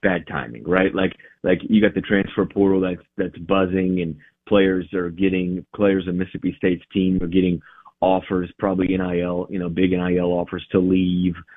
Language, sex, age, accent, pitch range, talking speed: English, male, 30-49, American, 85-100 Hz, 175 wpm